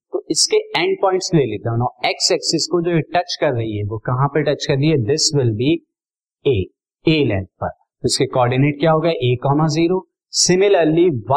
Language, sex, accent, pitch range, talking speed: Hindi, male, native, 125-165 Hz, 150 wpm